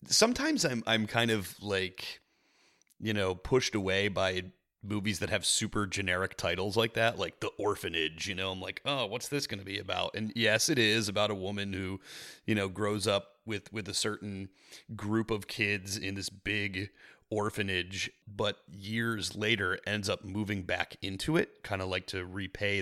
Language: English